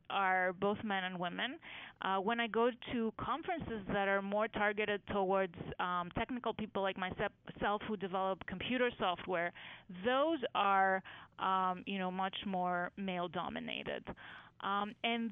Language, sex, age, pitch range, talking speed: English, female, 30-49, 185-225 Hz, 140 wpm